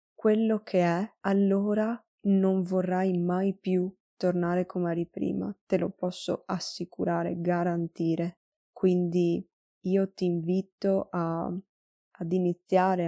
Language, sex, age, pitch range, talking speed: Italian, female, 20-39, 175-200 Hz, 105 wpm